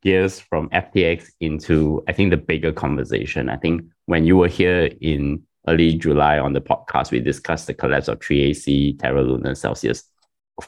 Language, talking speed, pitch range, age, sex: English, 180 wpm, 75-90 Hz, 20-39, male